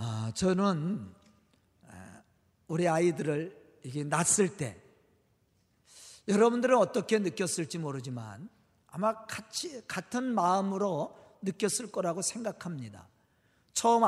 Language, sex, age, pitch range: Korean, male, 50-69, 150-235 Hz